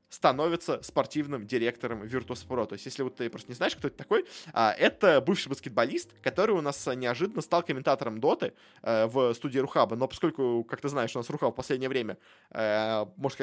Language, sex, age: Russian, male, 20-39